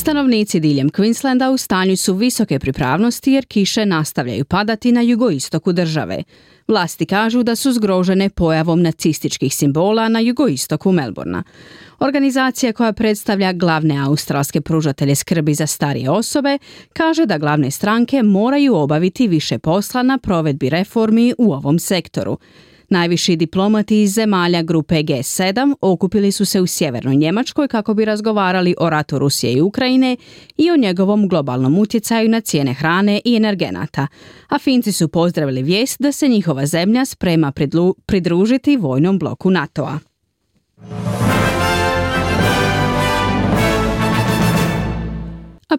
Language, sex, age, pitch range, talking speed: Croatian, female, 30-49, 150-225 Hz, 125 wpm